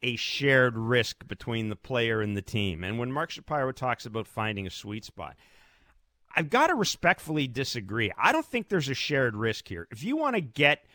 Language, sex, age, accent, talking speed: English, male, 50-69, American, 205 wpm